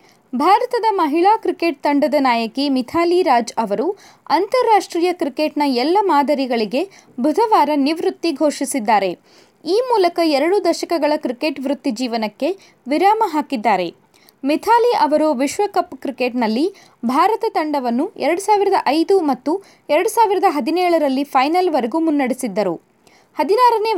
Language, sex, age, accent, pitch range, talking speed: Kannada, female, 20-39, native, 265-365 Hz, 95 wpm